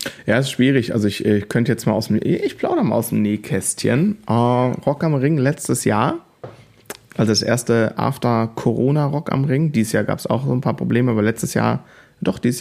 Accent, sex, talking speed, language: German, male, 210 wpm, German